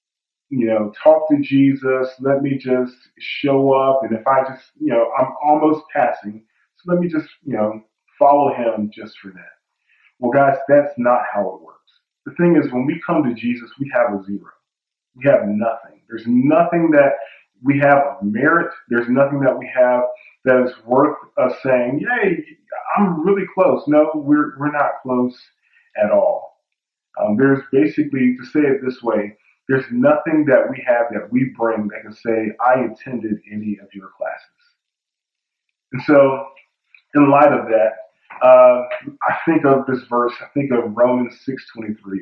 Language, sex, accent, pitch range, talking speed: English, male, American, 115-155 Hz, 175 wpm